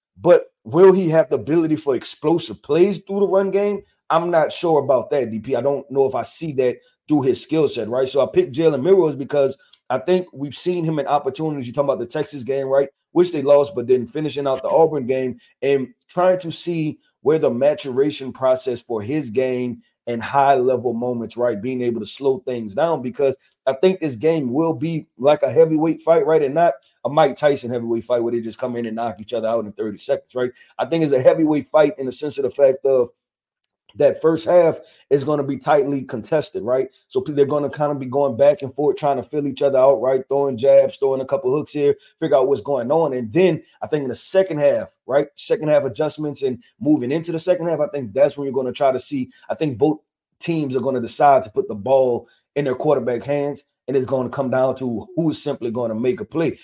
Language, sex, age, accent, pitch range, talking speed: English, male, 30-49, American, 130-165 Hz, 240 wpm